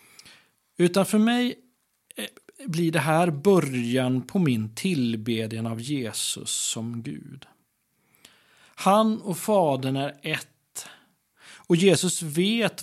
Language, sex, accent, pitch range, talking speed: Swedish, male, native, 125-195 Hz, 105 wpm